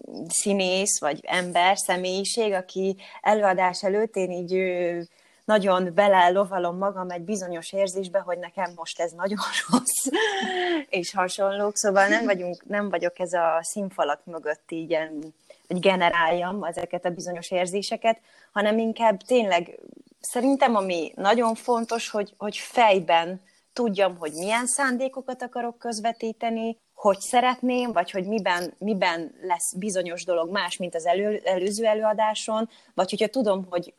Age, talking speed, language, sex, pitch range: 30-49, 130 wpm, Hungarian, female, 175-215 Hz